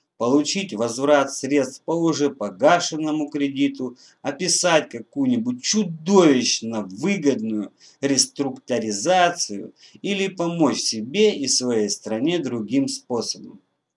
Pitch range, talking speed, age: 115-180 Hz, 85 wpm, 50-69